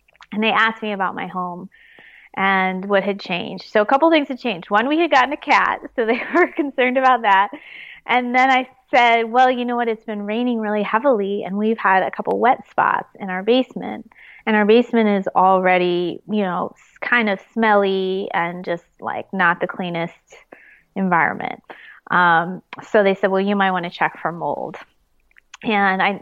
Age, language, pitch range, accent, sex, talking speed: 20-39, English, 190-245 Hz, American, female, 190 wpm